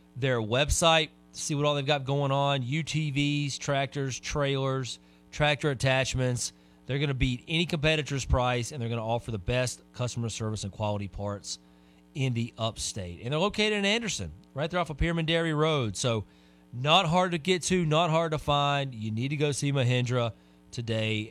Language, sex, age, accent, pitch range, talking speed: English, male, 30-49, American, 95-145 Hz, 180 wpm